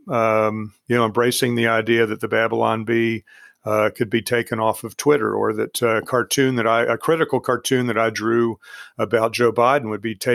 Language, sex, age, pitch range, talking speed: English, male, 50-69, 110-130 Hz, 205 wpm